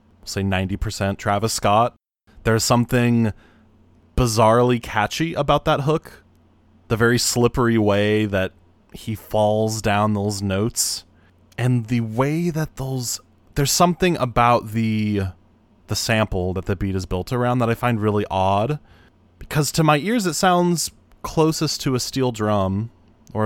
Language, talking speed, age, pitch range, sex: English, 140 wpm, 20-39, 100-125 Hz, male